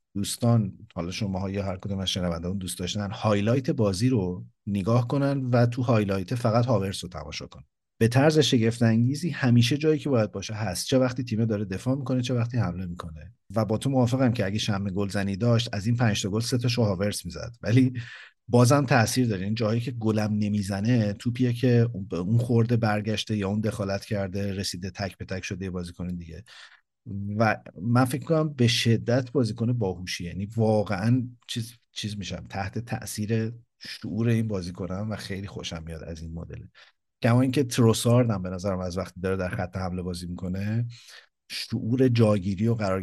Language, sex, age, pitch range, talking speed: Persian, male, 50-69, 95-120 Hz, 180 wpm